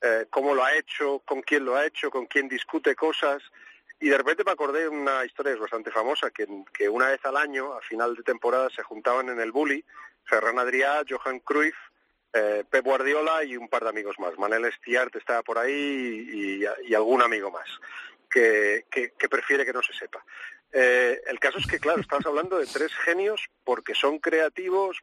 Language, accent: Spanish, Spanish